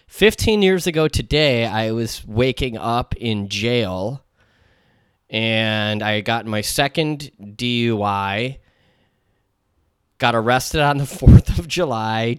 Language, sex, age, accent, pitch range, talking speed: English, male, 20-39, American, 105-135 Hz, 110 wpm